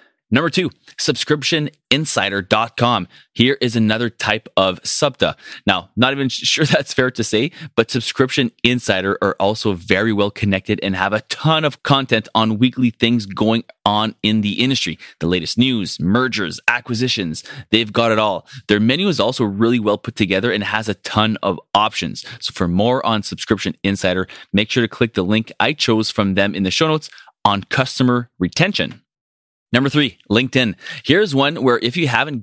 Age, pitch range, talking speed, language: 20-39, 100-125 Hz, 175 wpm, English